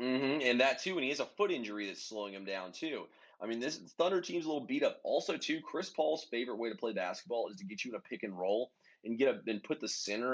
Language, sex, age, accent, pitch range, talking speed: English, male, 30-49, American, 105-125 Hz, 275 wpm